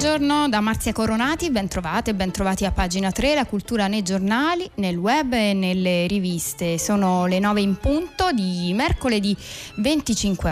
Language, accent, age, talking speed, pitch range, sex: Italian, native, 20-39, 150 wpm, 175-215 Hz, female